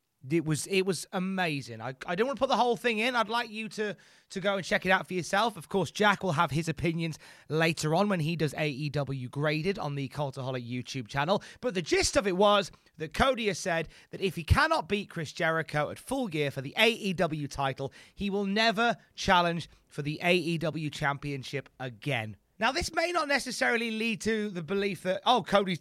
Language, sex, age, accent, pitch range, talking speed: English, male, 30-49, British, 155-215 Hz, 210 wpm